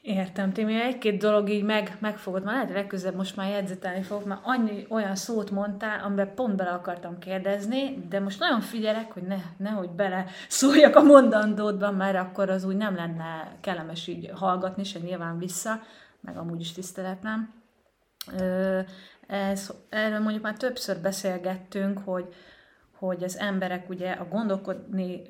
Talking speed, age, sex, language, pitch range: 150 wpm, 30-49, female, Hungarian, 185-215 Hz